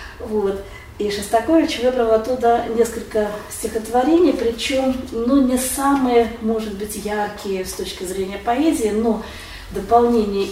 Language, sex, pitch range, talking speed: Russian, female, 185-235 Hz, 115 wpm